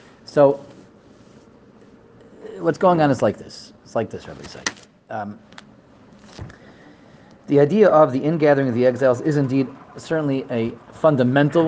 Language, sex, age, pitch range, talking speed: English, male, 30-49, 110-140 Hz, 130 wpm